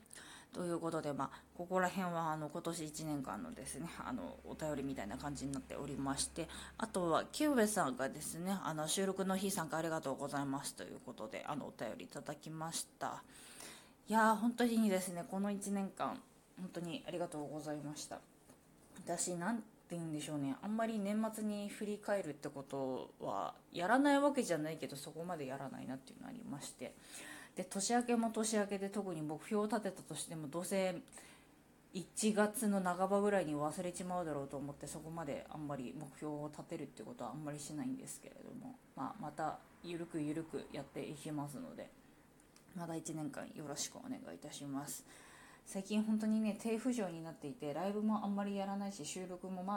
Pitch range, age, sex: 150-210 Hz, 20-39, female